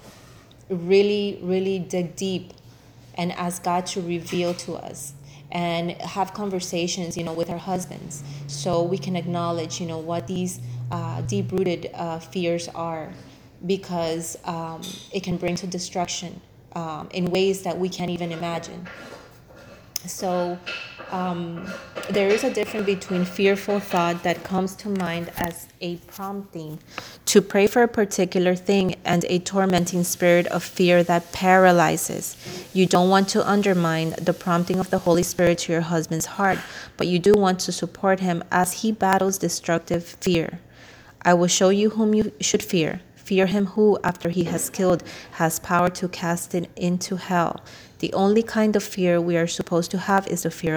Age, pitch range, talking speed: 30-49, 170-190 Hz, 165 wpm